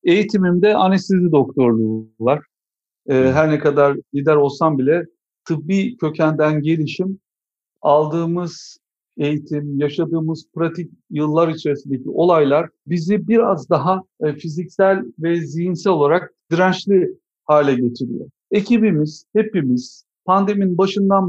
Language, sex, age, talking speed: Turkish, male, 60-79, 100 wpm